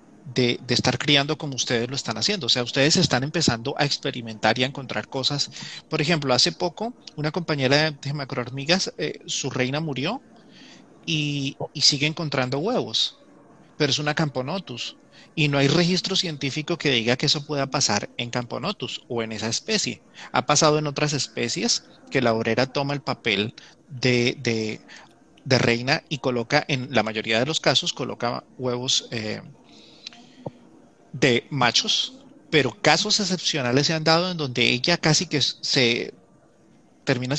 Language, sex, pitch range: Spanish, male, 125-165 Hz